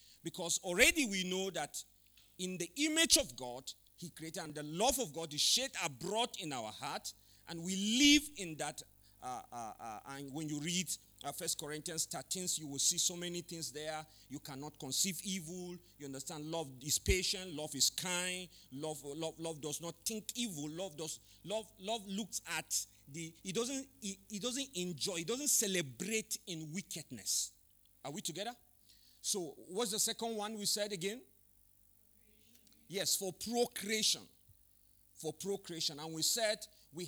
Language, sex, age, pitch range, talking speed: English, male, 40-59, 140-200 Hz, 165 wpm